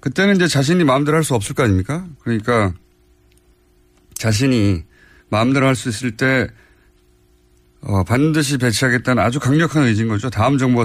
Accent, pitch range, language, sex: native, 95-145 Hz, Korean, male